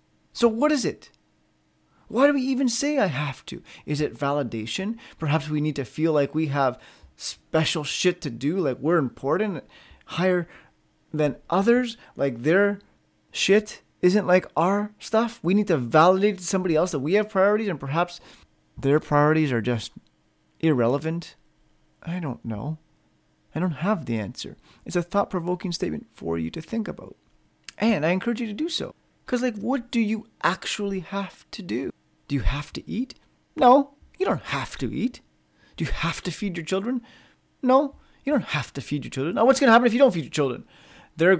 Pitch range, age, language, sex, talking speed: 145-215 Hz, 30-49, English, male, 185 wpm